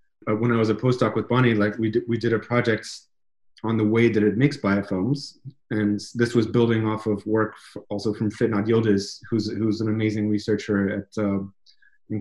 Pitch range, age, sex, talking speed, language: 105-125 Hz, 30-49, male, 195 wpm, English